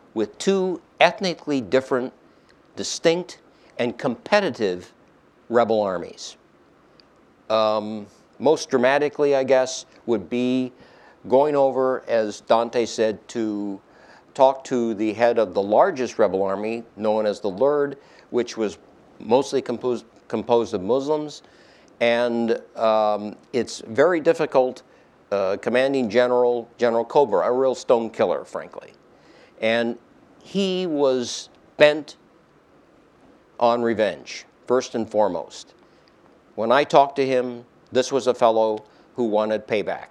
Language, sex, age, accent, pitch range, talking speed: English, male, 50-69, American, 110-135 Hz, 115 wpm